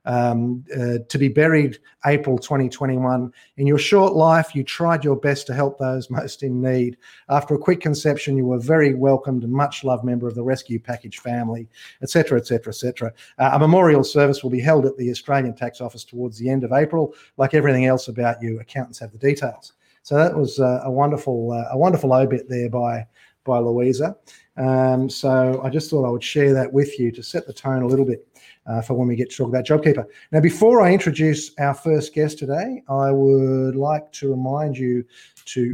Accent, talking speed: Australian, 210 wpm